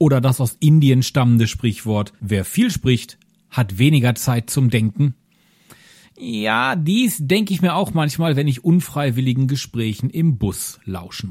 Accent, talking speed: German, 150 wpm